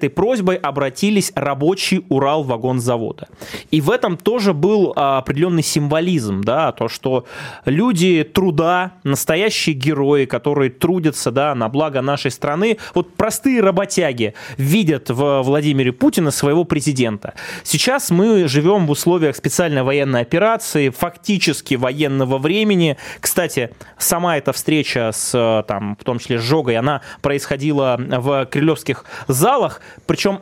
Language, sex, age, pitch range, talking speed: Russian, male, 20-39, 130-175 Hz, 130 wpm